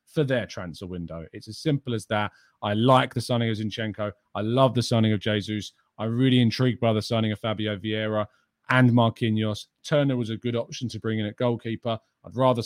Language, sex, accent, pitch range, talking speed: English, male, British, 110-130 Hz, 210 wpm